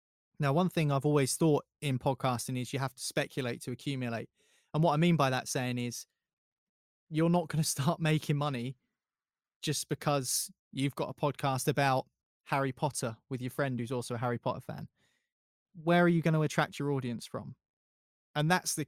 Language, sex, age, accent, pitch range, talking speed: English, male, 20-39, British, 130-160 Hz, 190 wpm